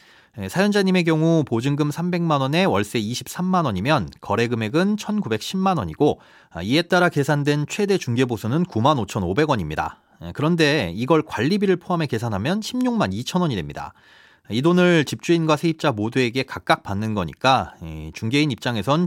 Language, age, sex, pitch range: Korean, 30-49, male, 110-165 Hz